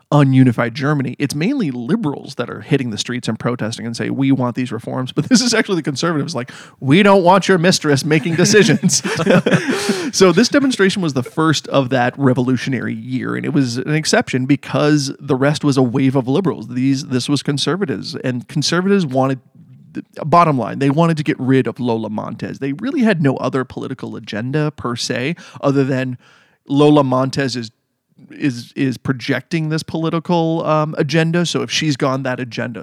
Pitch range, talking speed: 130-160 Hz, 180 wpm